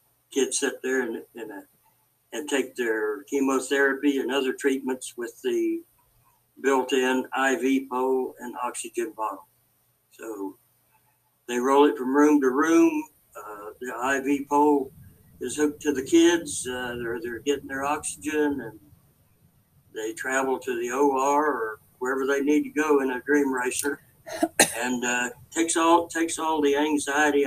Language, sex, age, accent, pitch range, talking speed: English, male, 60-79, American, 125-150 Hz, 150 wpm